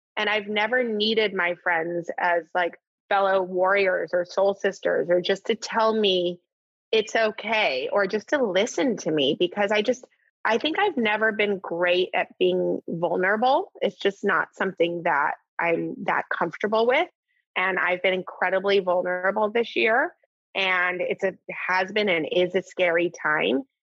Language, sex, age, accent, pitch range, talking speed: English, female, 20-39, American, 190-245 Hz, 160 wpm